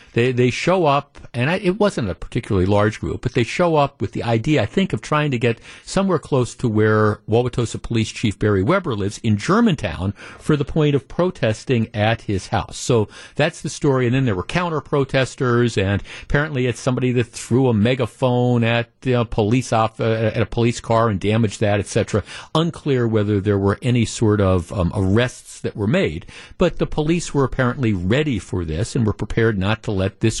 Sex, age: male, 50-69